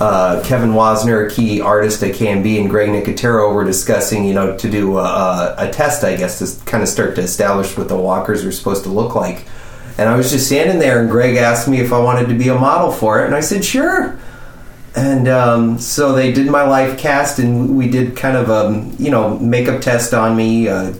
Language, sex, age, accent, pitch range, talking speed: English, male, 30-49, American, 105-130 Hz, 230 wpm